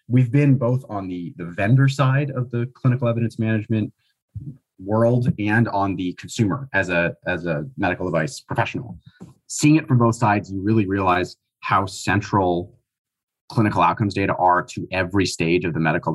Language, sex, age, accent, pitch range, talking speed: English, male, 30-49, American, 95-120 Hz, 165 wpm